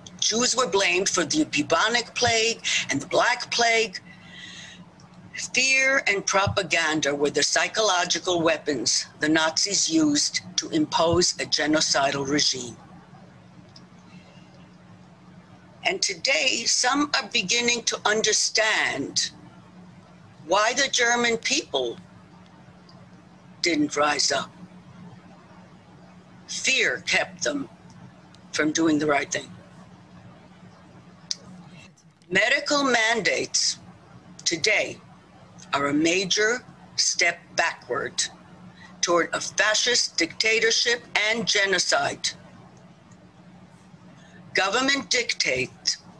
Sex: female